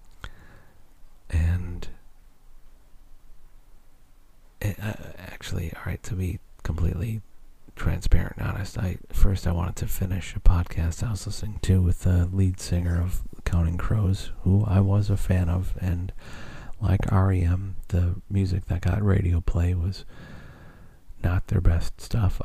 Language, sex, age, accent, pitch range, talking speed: English, male, 40-59, American, 85-100 Hz, 130 wpm